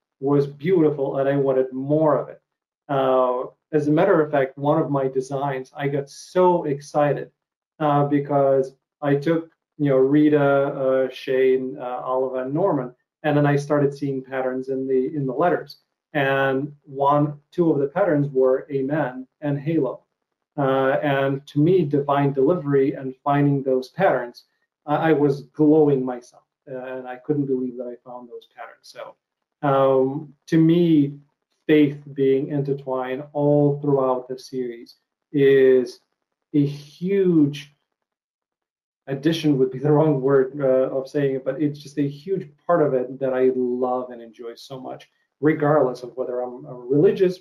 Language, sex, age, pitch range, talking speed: English, male, 40-59, 130-150 Hz, 155 wpm